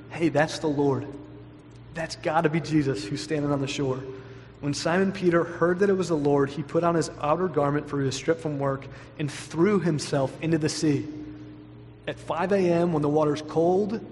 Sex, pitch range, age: male, 140-165 Hz, 30-49